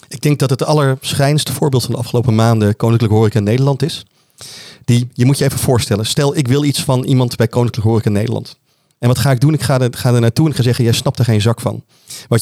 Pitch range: 115-140 Hz